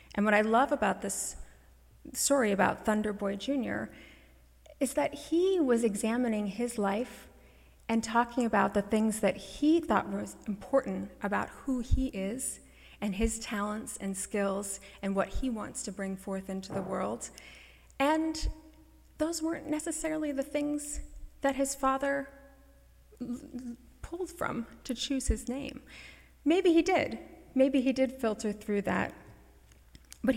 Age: 30-49